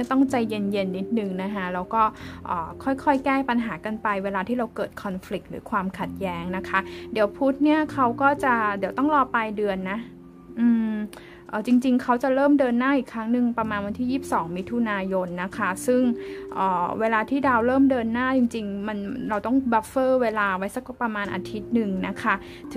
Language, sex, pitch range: Thai, female, 195-245 Hz